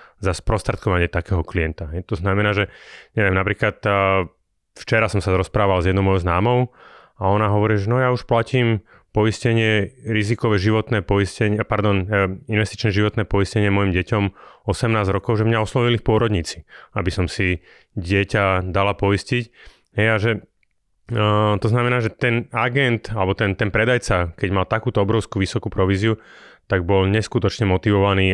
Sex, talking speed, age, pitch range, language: male, 150 wpm, 30-49, 95-110 Hz, Slovak